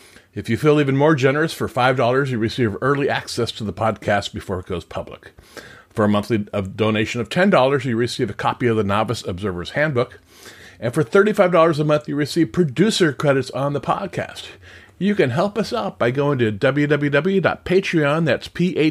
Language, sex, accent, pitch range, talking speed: English, male, American, 105-150 Hz, 185 wpm